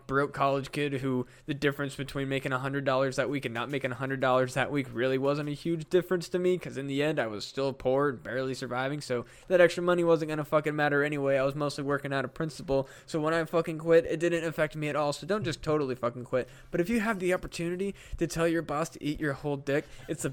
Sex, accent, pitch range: male, American, 125-160 Hz